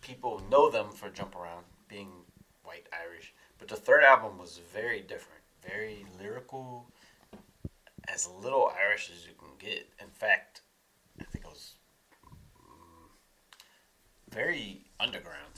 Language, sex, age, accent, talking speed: English, male, 30-49, American, 130 wpm